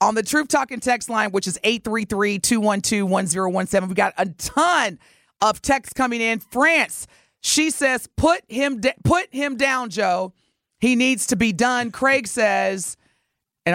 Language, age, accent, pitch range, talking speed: English, 40-59, American, 175-235 Hz, 155 wpm